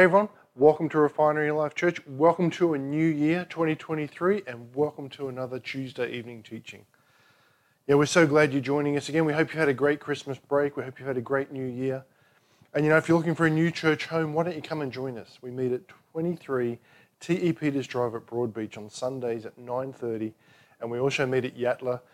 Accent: Australian